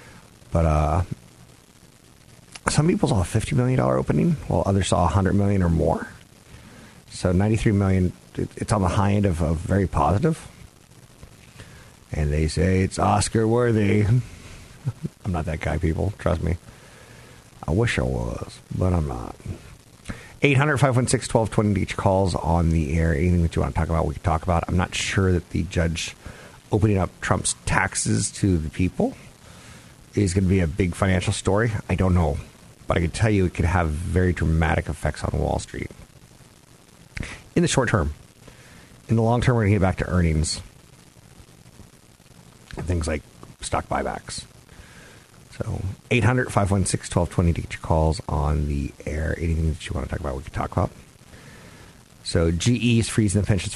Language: English